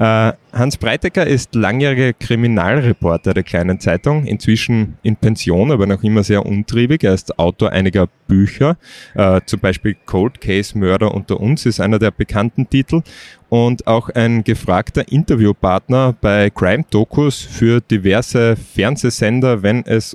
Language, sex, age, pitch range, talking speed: German, male, 20-39, 100-120 Hz, 145 wpm